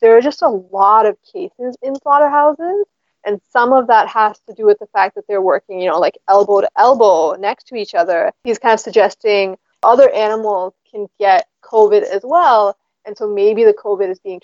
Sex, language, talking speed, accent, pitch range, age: female, English, 210 wpm, American, 200-285 Hz, 20-39